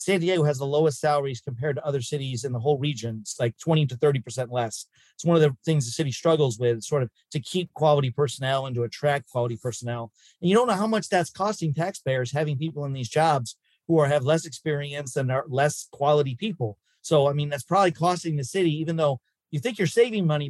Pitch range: 135-170 Hz